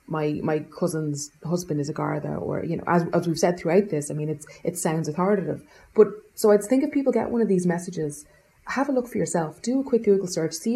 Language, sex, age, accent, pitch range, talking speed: English, female, 30-49, Irish, 160-200 Hz, 245 wpm